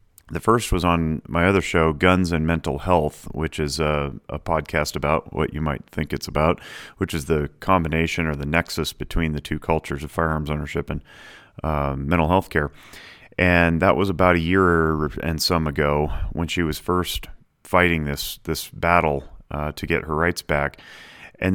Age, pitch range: 30-49, 75-90 Hz